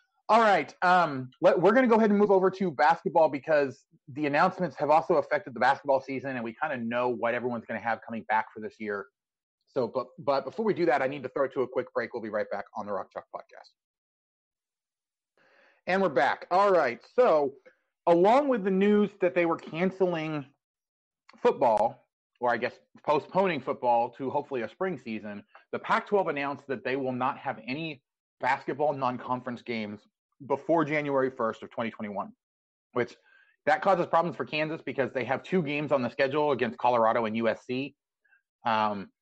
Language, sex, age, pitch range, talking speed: English, male, 30-49, 115-170 Hz, 190 wpm